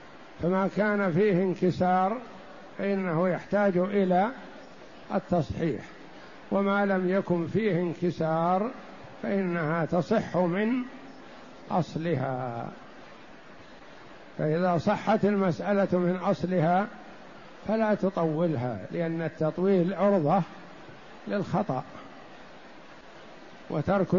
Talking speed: 70 wpm